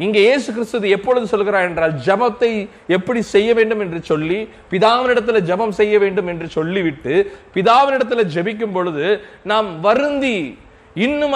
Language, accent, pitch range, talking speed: Tamil, native, 170-245 Hz, 120 wpm